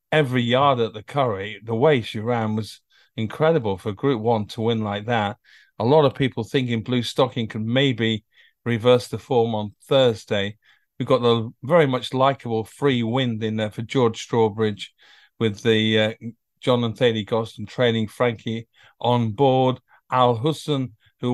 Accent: British